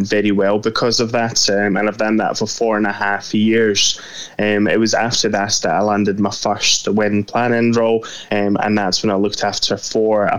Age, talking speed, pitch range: 10-29, 220 wpm, 100-115 Hz